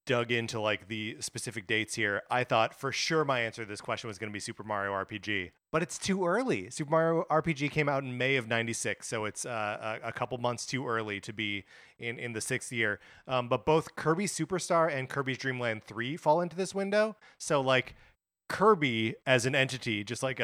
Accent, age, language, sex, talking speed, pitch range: American, 30-49, English, male, 210 wpm, 110-135 Hz